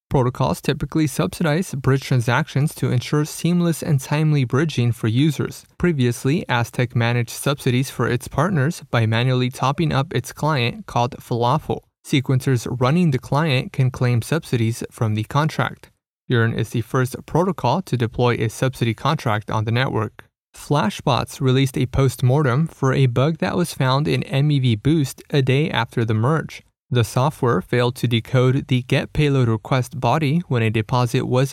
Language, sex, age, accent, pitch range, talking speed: English, male, 20-39, American, 120-145 Hz, 160 wpm